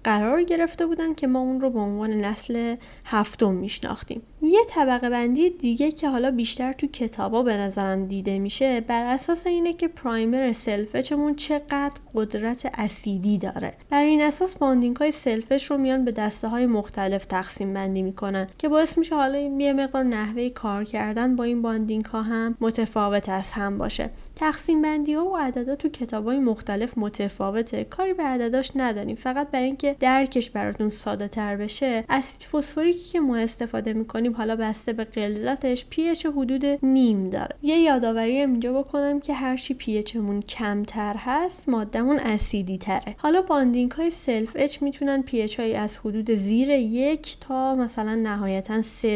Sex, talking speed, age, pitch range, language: female, 155 wpm, 10-29, 215-280 Hz, Persian